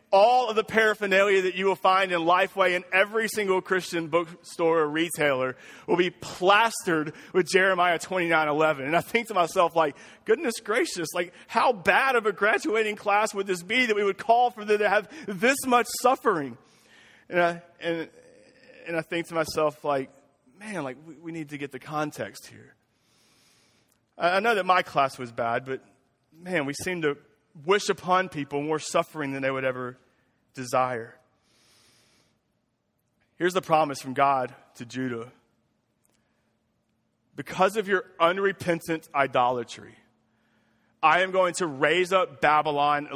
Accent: American